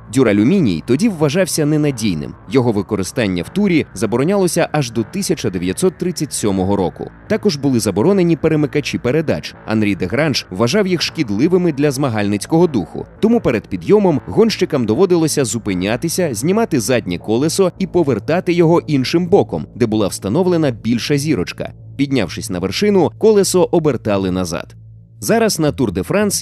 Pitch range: 110-175 Hz